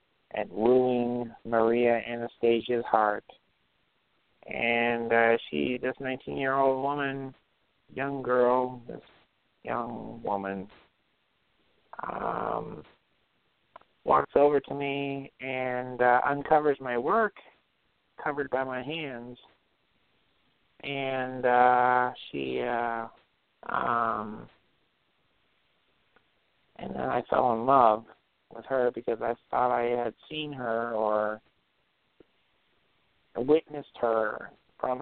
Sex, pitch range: male, 115-135 Hz